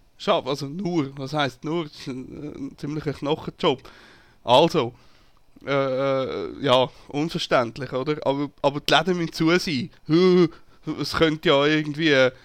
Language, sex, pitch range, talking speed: German, male, 135-165 Hz, 135 wpm